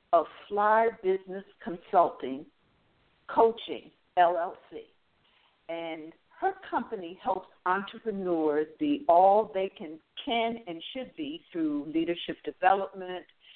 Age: 60-79